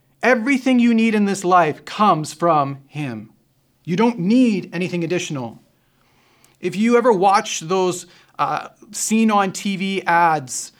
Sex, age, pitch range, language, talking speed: male, 30-49, 140-200 Hz, English, 135 wpm